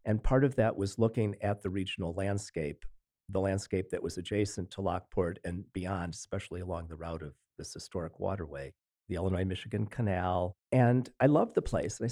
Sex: male